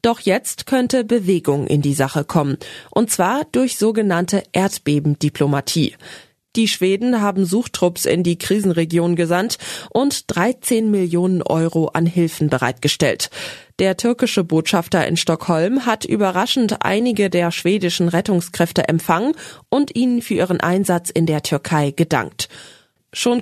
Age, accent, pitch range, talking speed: 20-39, German, 165-220 Hz, 130 wpm